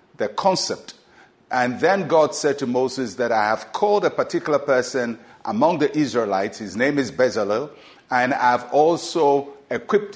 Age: 50-69